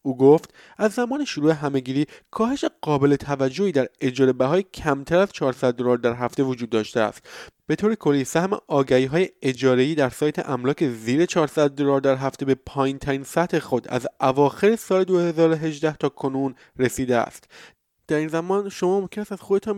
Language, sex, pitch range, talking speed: Persian, male, 135-190 Hz, 165 wpm